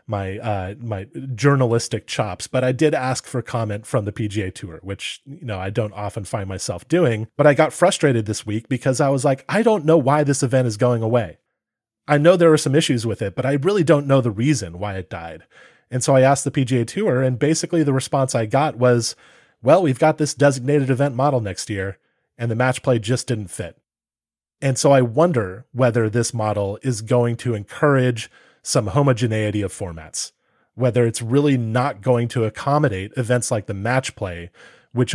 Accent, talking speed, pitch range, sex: American, 205 wpm, 110-135 Hz, male